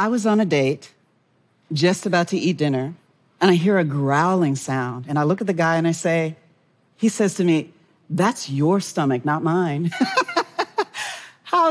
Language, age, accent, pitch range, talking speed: Portuguese, 40-59, American, 145-180 Hz, 180 wpm